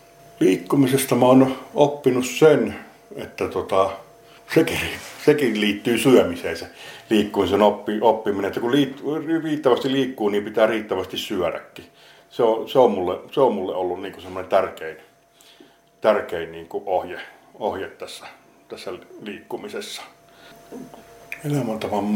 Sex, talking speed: male, 115 wpm